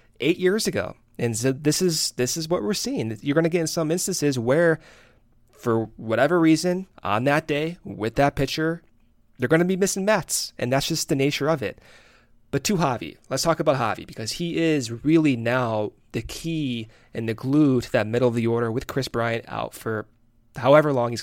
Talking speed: 200 wpm